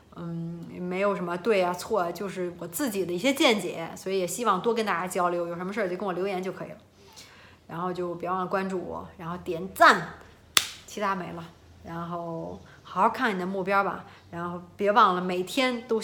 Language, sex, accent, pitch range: Chinese, female, native, 175-205 Hz